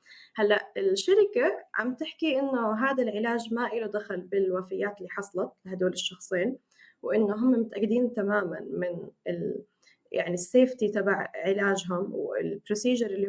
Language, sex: Arabic, female